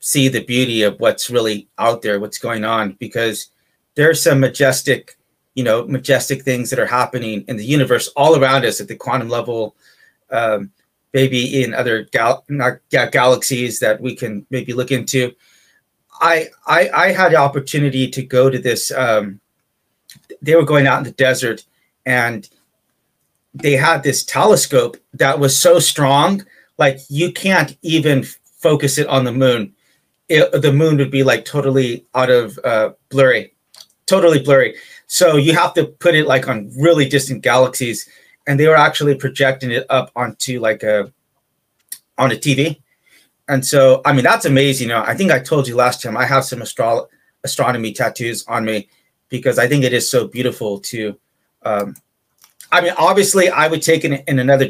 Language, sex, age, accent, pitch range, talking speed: English, male, 30-49, American, 125-145 Hz, 175 wpm